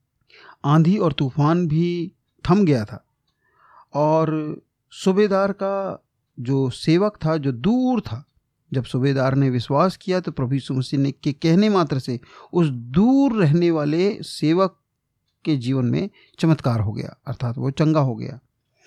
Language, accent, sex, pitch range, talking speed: Hindi, native, male, 130-170 Hz, 145 wpm